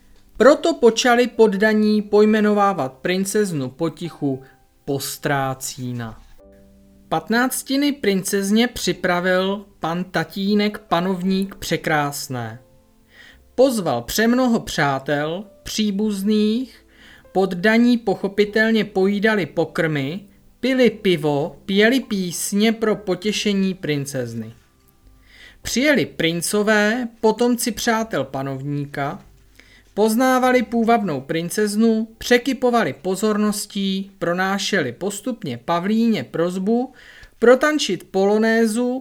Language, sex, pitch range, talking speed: Czech, male, 145-225 Hz, 70 wpm